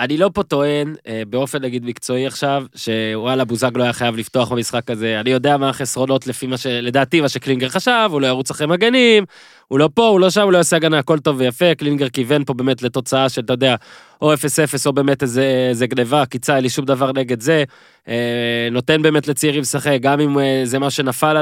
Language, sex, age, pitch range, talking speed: Hebrew, male, 20-39, 130-165 Hz, 215 wpm